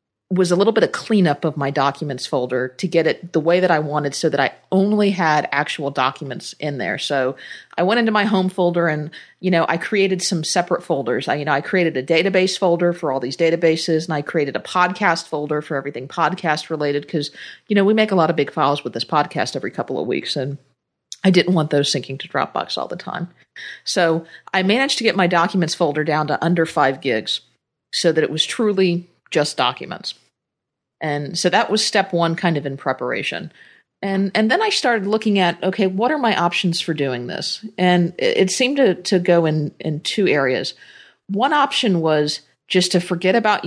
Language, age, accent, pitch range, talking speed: English, 40-59, American, 150-185 Hz, 215 wpm